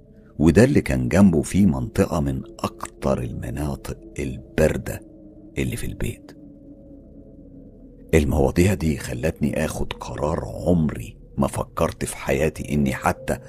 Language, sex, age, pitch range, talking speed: Arabic, male, 50-69, 70-95 Hz, 110 wpm